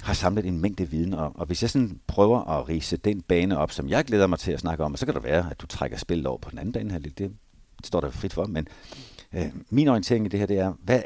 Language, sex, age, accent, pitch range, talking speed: Danish, male, 60-79, native, 80-105 Hz, 290 wpm